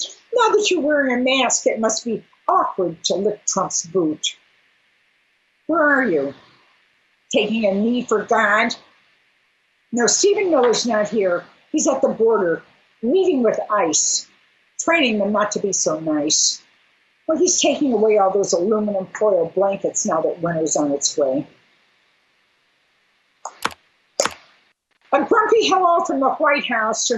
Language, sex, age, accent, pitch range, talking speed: English, female, 50-69, American, 210-335 Hz, 140 wpm